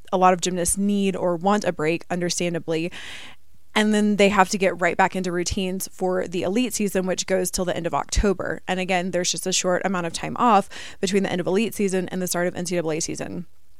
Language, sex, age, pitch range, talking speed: English, female, 20-39, 180-205 Hz, 230 wpm